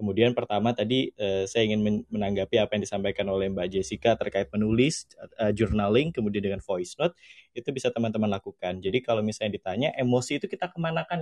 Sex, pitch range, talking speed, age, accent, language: male, 105-140 Hz, 175 wpm, 20-39, native, Indonesian